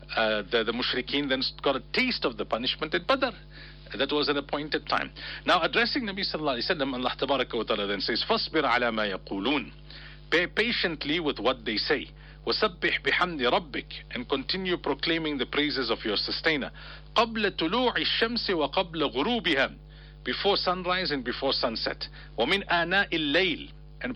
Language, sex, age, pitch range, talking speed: English, male, 50-69, 140-185 Hz, 155 wpm